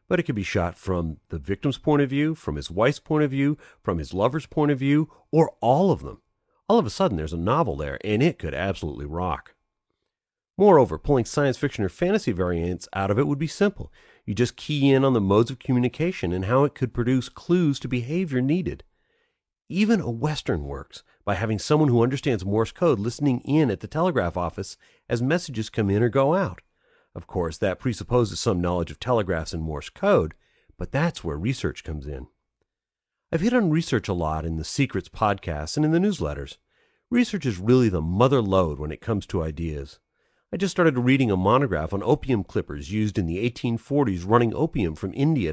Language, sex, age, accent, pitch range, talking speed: English, male, 40-59, American, 95-150 Hz, 205 wpm